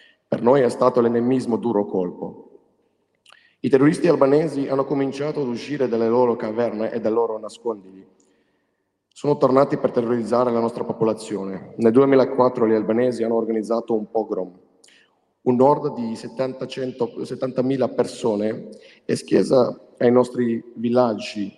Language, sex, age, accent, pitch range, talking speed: Italian, male, 40-59, native, 110-130 Hz, 130 wpm